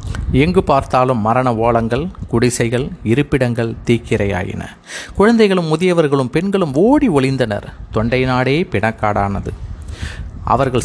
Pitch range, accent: 105-140 Hz, native